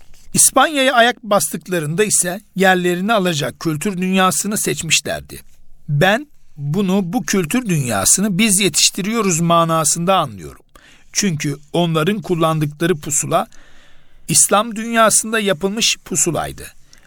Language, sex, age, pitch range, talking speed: Turkish, male, 60-79, 160-200 Hz, 90 wpm